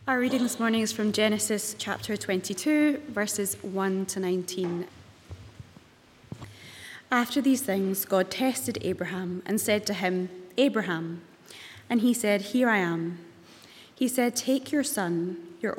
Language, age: English, 20-39